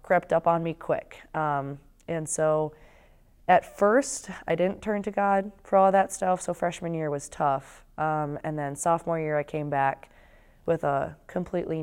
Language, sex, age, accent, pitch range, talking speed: English, female, 20-39, American, 145-165 Hz, 180 wpm